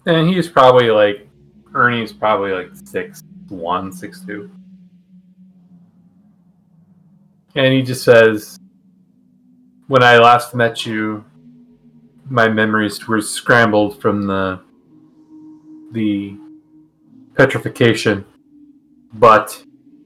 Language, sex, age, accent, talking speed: English, male, 20-39, American, 85 wpm